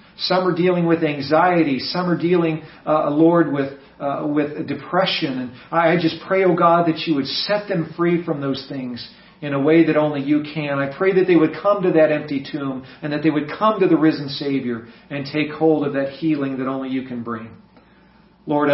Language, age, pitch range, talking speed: English, 40-59, 140-175 Hz, 215 wpm